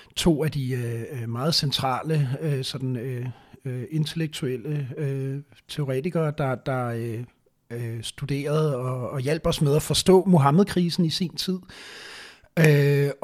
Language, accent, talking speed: Danish, native, 120 wpm